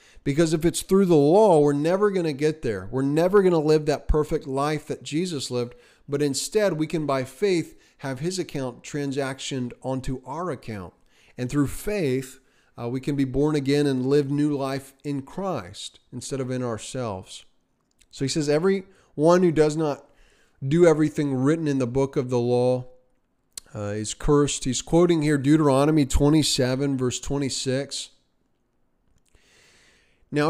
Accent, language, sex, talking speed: American, English, male, 165 wpm